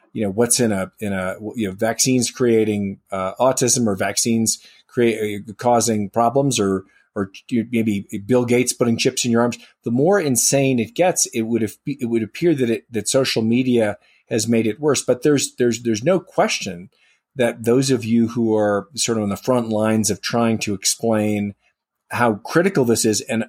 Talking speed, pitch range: 185 wpm, 110-125 Hz